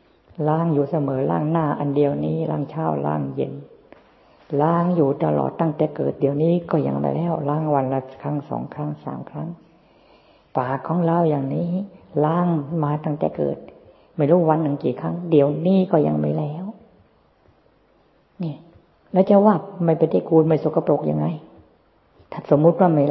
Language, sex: Thai, female